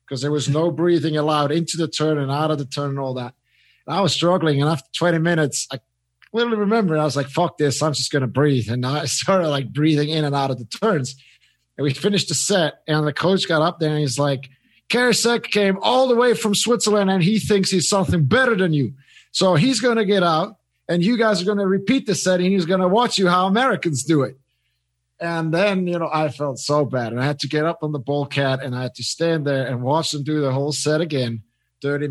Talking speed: 255 wpm